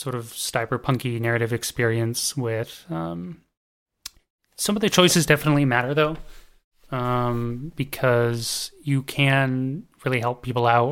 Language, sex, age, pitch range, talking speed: English, male, 30-49, 115-135 Hz, 125 wpm